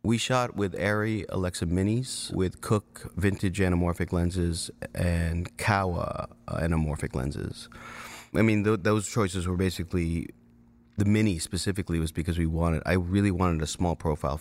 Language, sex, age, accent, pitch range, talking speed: English, male, 30-49, American, 85-100 Hz, 140 wpm